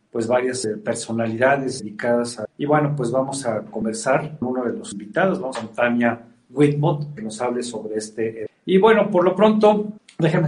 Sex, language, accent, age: male, Spanish, Mexican, 50-69